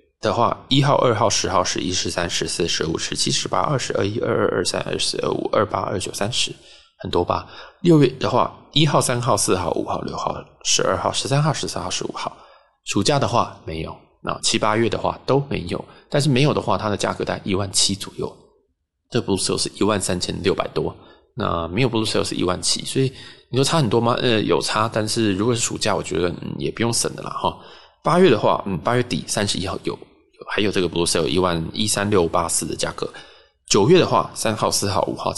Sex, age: male, 20-39